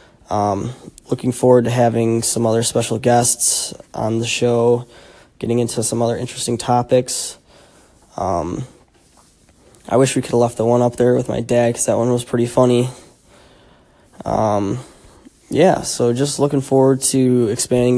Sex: male